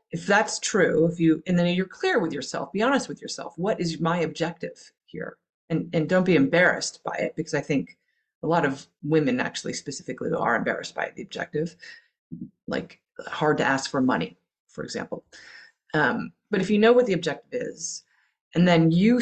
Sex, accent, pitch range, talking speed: female, American, 155-210 Hz, 190 wpm